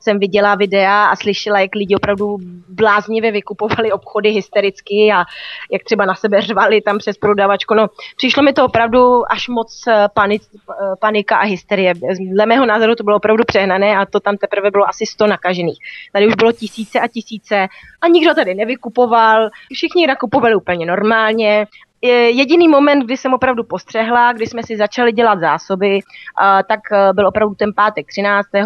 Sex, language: female, Czech